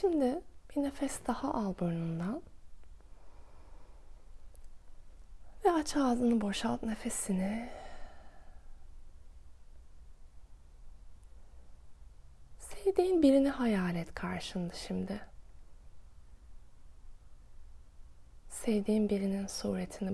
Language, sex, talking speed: Turkish, female, 60 wpm